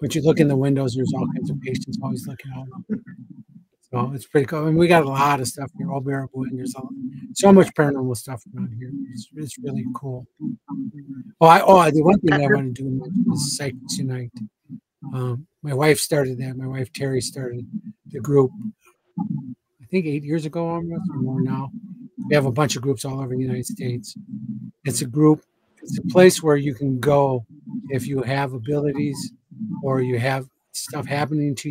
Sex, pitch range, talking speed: male, 130-160 Hz, 205 wpm